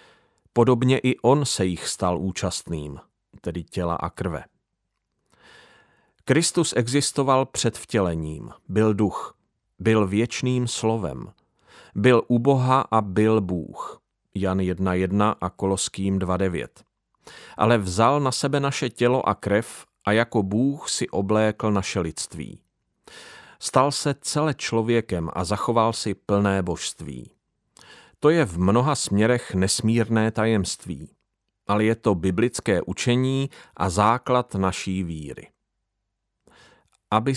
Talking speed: 115 wpm